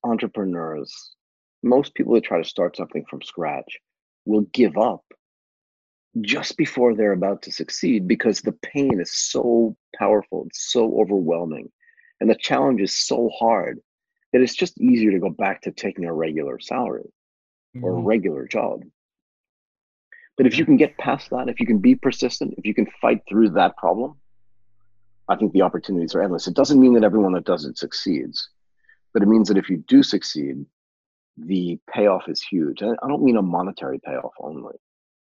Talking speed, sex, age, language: 175 wpm, male, 40-59, English